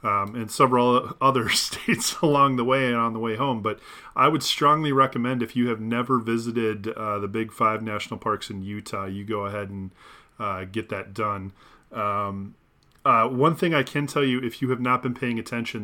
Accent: American